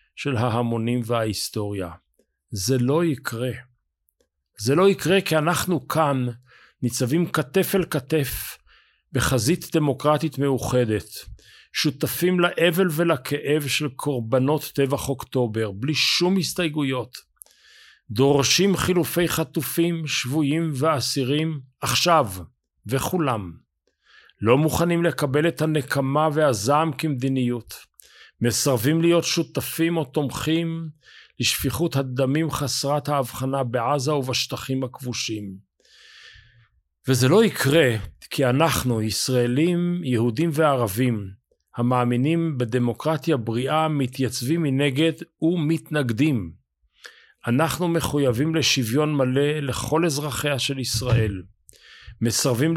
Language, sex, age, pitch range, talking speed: Hebrew, male, 50-69, 125-155 Hz, 90 wpm